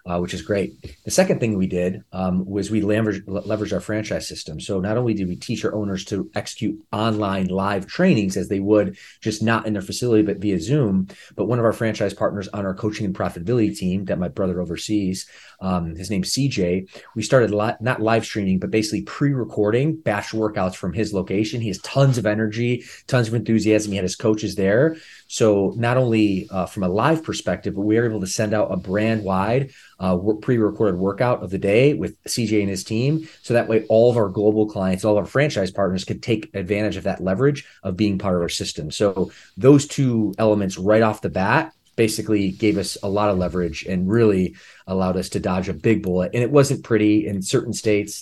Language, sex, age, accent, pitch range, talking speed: English, male, 30-49, American, 95-110 Hz, 215 wpm